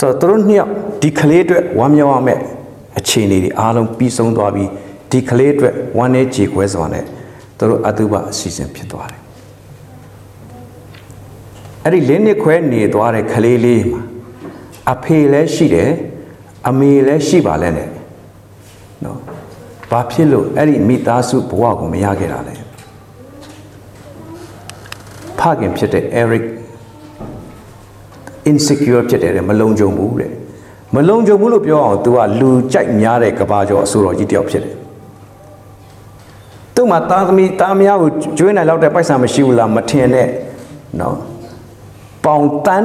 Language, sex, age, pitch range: English, male, 60-79, 100-135 Hz